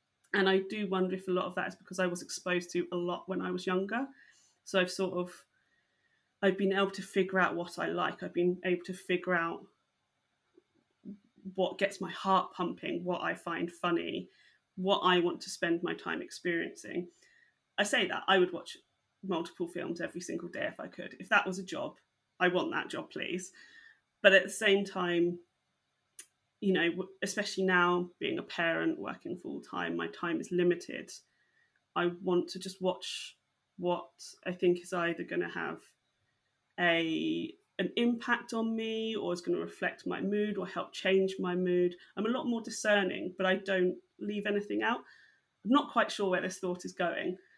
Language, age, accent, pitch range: English, 30-49, British, 180-220 Hz